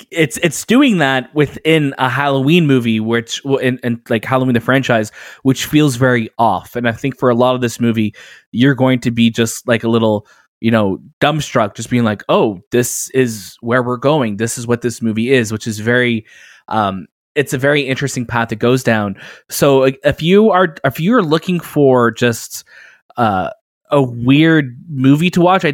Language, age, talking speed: English, 20-39, 195 wpm